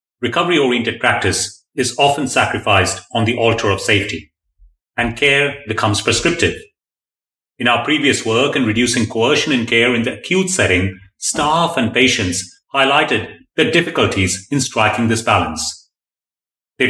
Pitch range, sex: 105-135 Hz, male